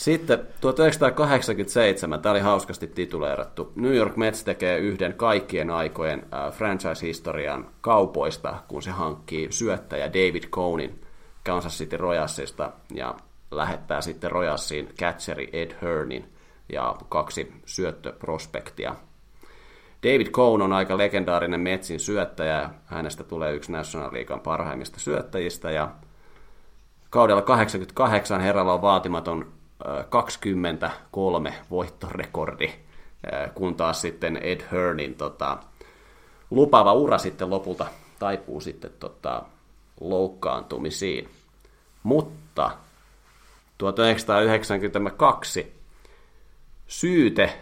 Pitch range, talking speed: 85-105 Hz, 90 wpm